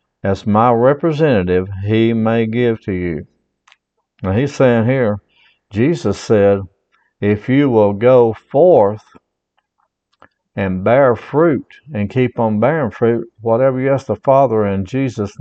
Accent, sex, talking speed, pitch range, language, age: American, male, 130 wpm, 105-140 Hz, English, 60-79